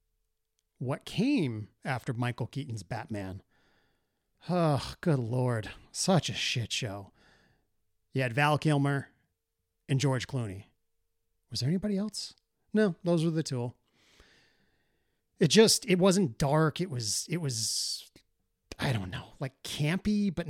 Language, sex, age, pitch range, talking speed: English, male, 30-49, 115-165 Hz, 130 wpm